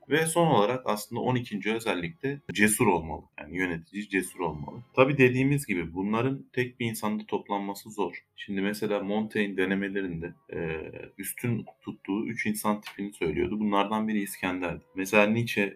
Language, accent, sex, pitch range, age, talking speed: Turkish, native, male, 90-125 Hz, 30-49, 140 wpm